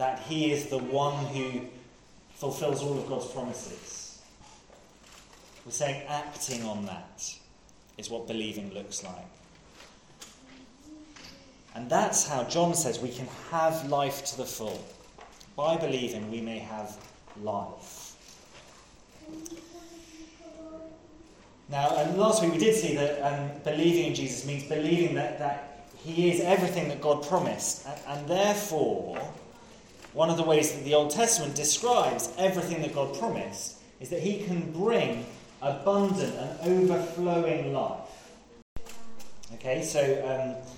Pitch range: 130-170 Hz